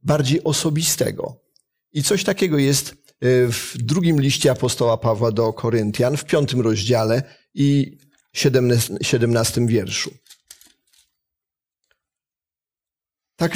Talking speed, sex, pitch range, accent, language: 90 wpm, male, 115-150 Hz, native, Polish